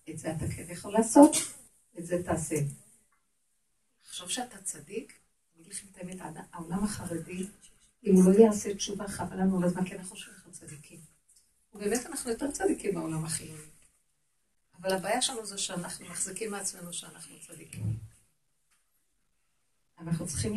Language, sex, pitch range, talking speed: Hebrew, female, 165-210 Hz, 55 wpm